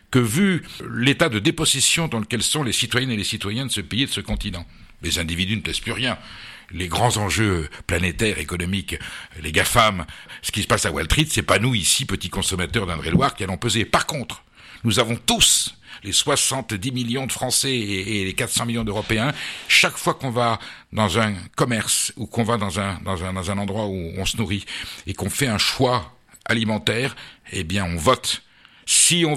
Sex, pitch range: male, 100-125 Hz